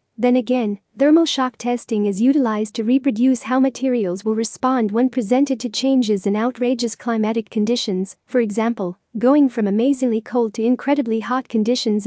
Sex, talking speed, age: female, 155 wpm, 40-59